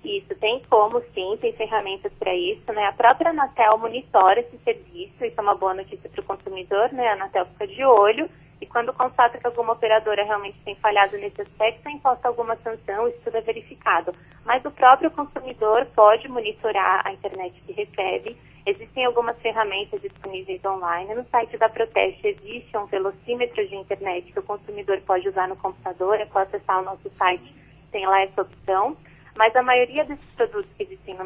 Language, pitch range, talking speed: Portuguese, 195-250 Hz, 180 wpm